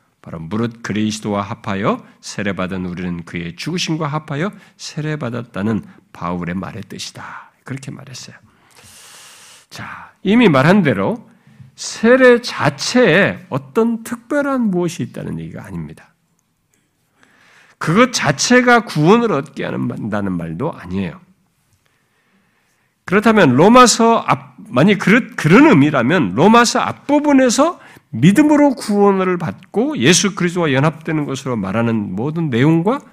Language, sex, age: Korean, male, 50-69